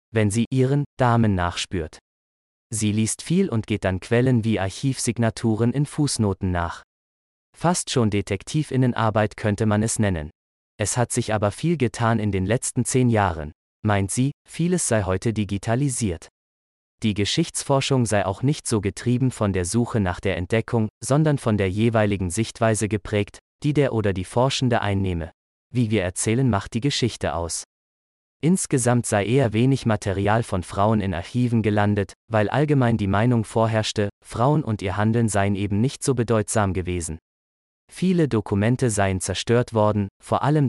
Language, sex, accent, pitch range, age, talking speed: German, male, German, 95-120 Hz, 20-39, 155 wpm